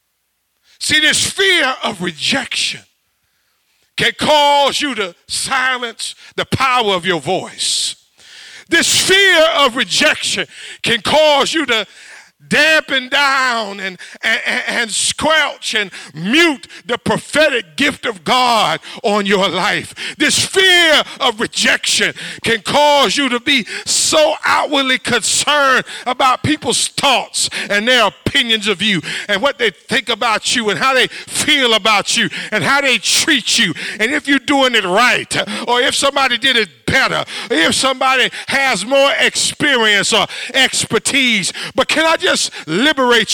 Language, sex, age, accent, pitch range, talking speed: English, male, 50-69, American, 205-280 Hz, 140 wpm